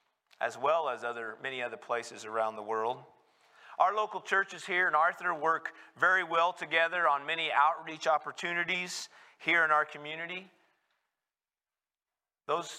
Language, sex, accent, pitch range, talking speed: English, male, American, 125-175 Hz, 135 wpm